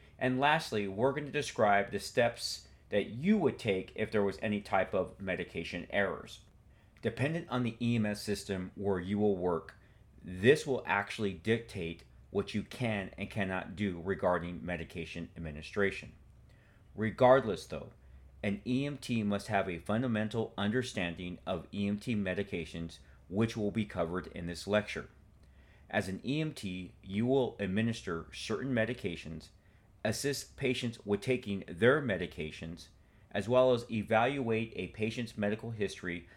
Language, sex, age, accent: English, male, 40-59, American